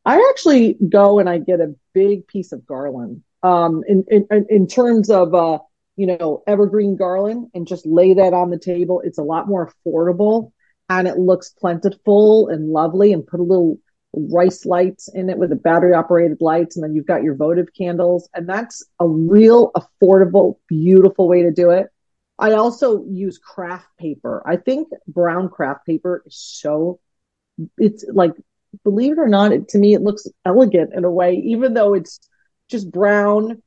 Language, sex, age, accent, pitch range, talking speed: English, female, 40-59, American, 170-210 Hz, 180 wpm